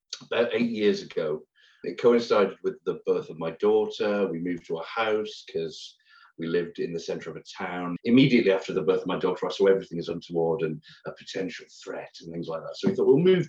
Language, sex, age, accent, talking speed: English, male, 40-59, British, 225 wpm